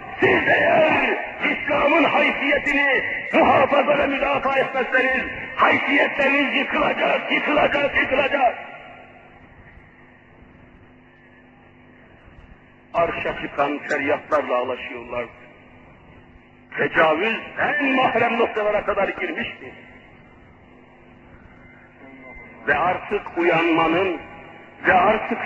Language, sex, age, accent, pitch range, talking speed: Turkish, male, 50-69, native, 245-280 Hz, 55 wpm